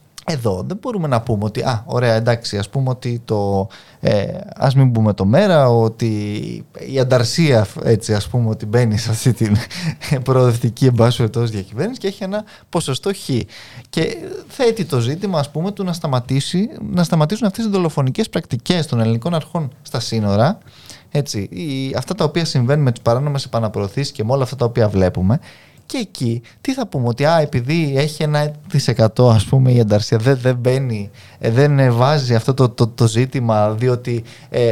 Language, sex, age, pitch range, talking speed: Greek, male, 20-39, 115-165 Hz, 175 wpm